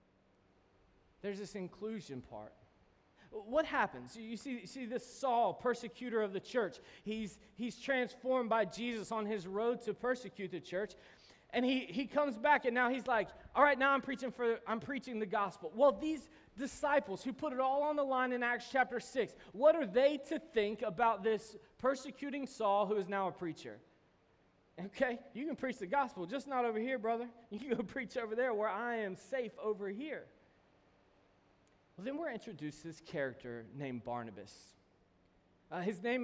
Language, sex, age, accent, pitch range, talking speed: English, male, 20-39, American, 175-250 Hz, 180 wpm